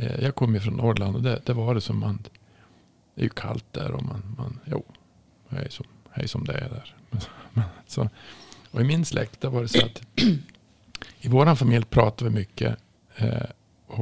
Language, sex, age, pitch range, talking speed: Swedish, male, 50-69, 110-135 Hz, 190 wpm